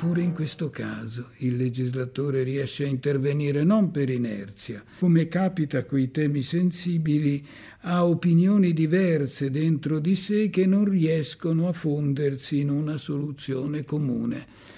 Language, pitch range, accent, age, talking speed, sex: Italian, 140-180 Hz, native, 50-69, 130 wpm, male